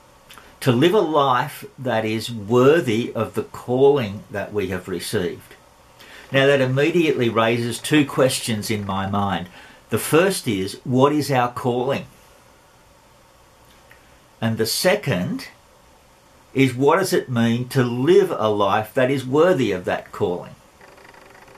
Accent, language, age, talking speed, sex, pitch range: Australian, English, 50-69, 135 wpm, male, 105-135 Hz